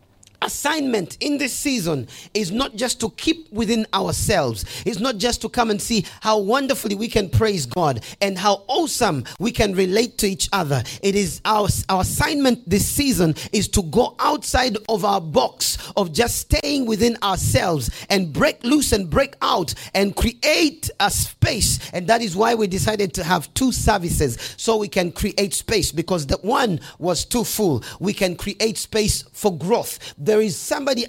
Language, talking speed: English, 180 wpm